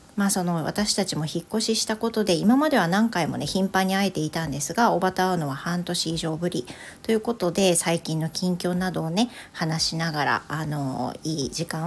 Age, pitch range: 40-59, 165-195 Hz